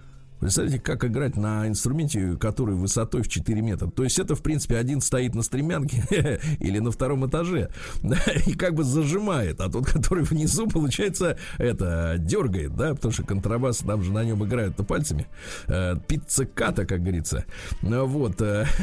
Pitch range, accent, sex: 110-160 Hz, native, male